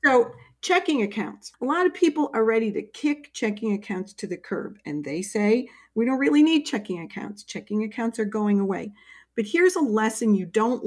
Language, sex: English, female